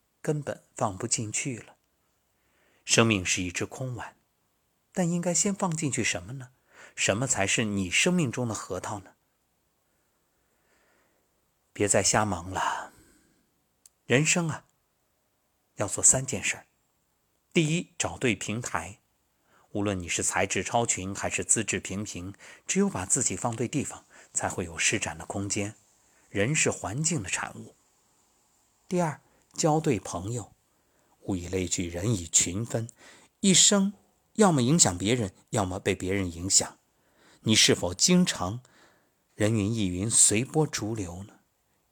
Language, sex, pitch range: Chinese, male, 95-140 Hz